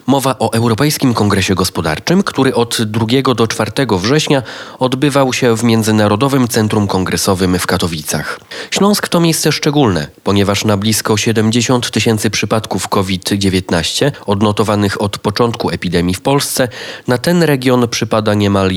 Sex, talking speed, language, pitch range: male, 130 wpm, Polish, 100-130 Hz